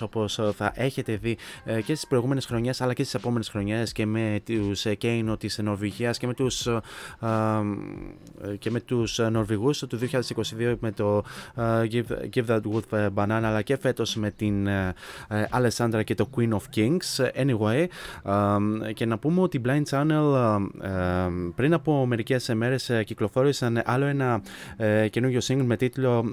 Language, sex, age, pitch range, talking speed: Greek, male, 20-39, 110-130 Hz, 140 wpm